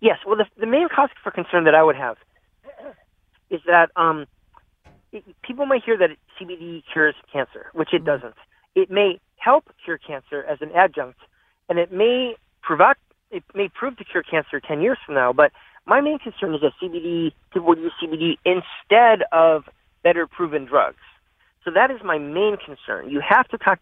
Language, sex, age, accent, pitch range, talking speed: English, male, 40-59, American, 150-205 Hz, 175 wpm